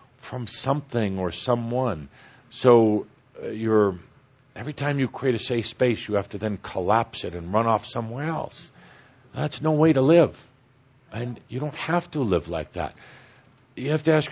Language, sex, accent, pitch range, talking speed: English, male, American, 110-135 Hz, 175 wpm